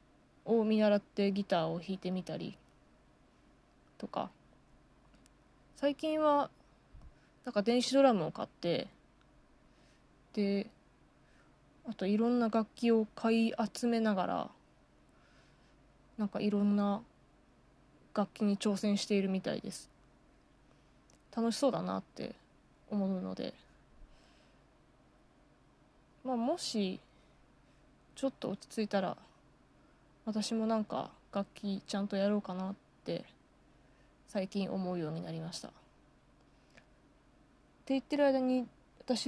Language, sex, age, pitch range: Japanese, female, 20-39, 200-240 Hz